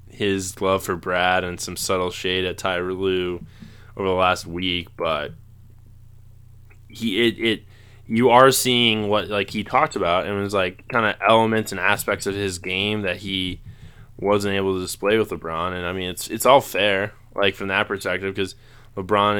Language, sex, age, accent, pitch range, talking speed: English, male, 20-39, American, 95-110 Hz, 185 wpm